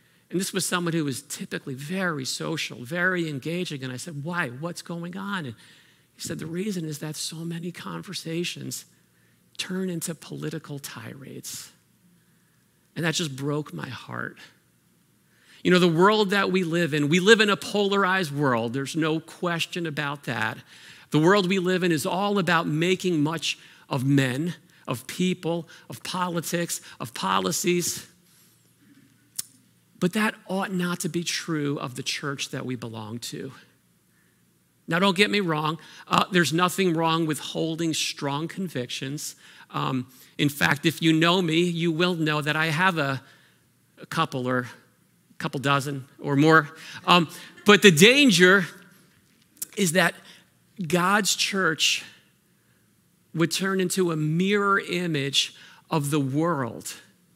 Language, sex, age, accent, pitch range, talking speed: Dutch, male, 50-69, American, 145-180 Hz, 150 wpm